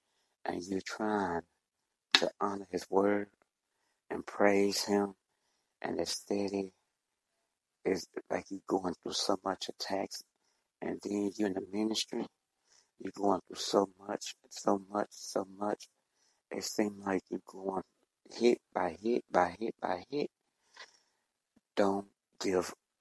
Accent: American